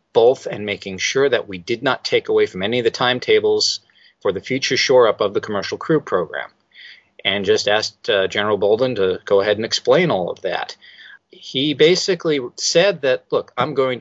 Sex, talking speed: male, 195 wpm